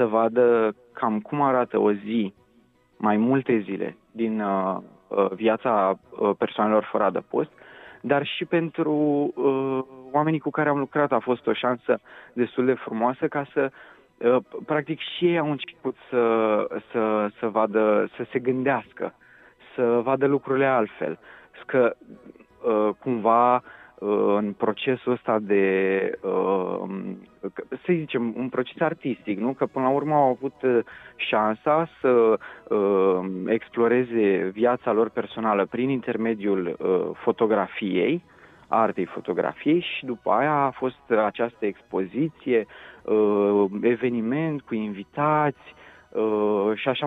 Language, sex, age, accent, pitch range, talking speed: Romanian, male, 30-49, native, 105-135 Hz, 110 wpm